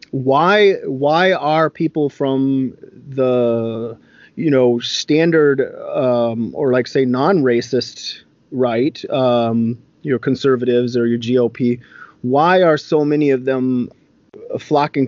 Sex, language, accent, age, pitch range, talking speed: male, English, American, 30-49, 120-150 Hz, 110 wpm